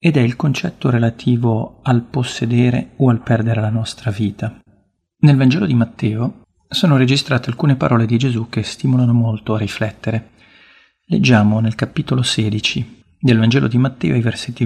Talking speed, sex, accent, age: 155 wpm, male, native, 40-59